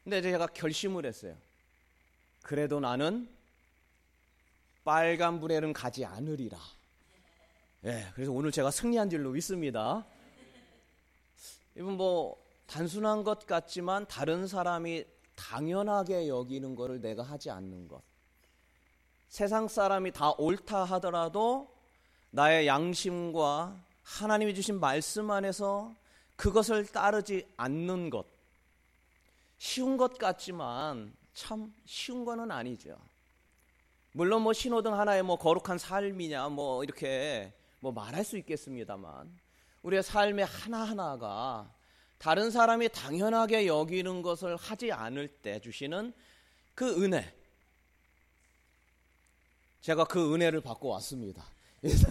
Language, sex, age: Korean, male, 30-49